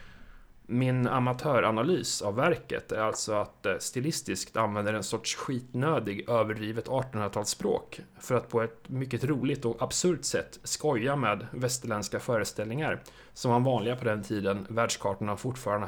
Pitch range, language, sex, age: 115-135 Hz, Swedish, male, 30-49